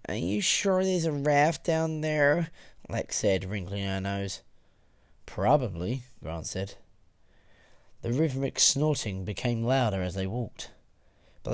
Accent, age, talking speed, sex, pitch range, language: British, 30-49, 130 wpm, male, 95-135 Hz, English